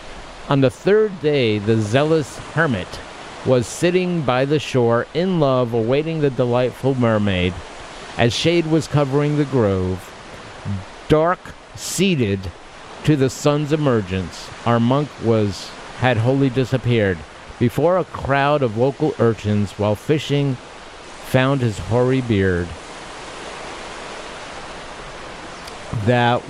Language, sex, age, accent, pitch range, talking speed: English, male, 50-69, American, 105-140 Hz, 110 wpm